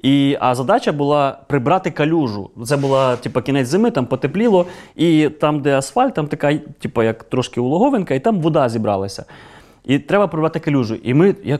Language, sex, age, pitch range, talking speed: Ukrainian, male, 20-39, 120-165 Hz, 175 wpm